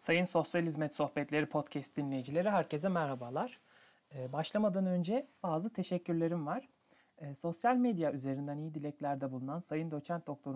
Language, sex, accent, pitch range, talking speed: Turkish, male, native, 140-180 Hz, 125 wpm